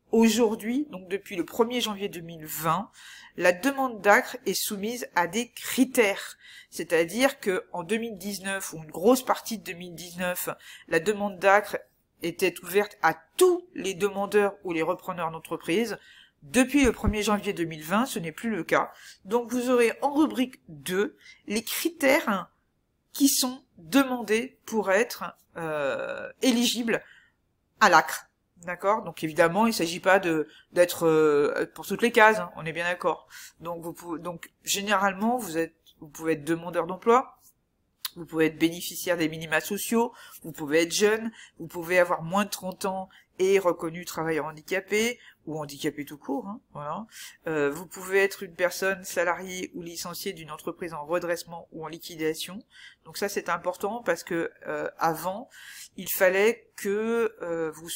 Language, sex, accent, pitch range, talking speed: French, female, French, 170-220 Hz, 155 wpm